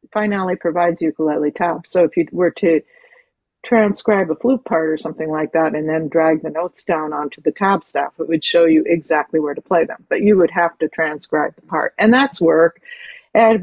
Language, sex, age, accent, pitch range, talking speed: English, female, 50-69, American, 165-210 Hz, 210 wpm